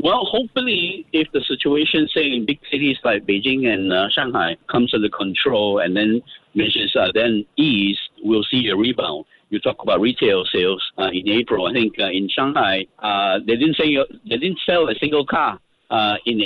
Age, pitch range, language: 50-69, 110-180 Hz, English